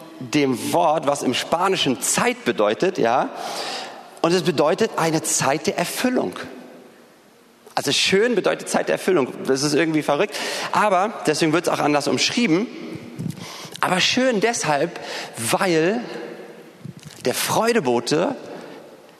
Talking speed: 120 wpm